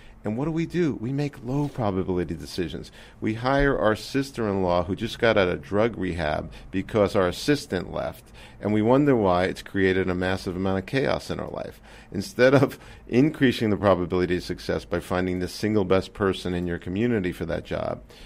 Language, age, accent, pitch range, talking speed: English, 50-69, American, 90-115 Hz, 190 wpm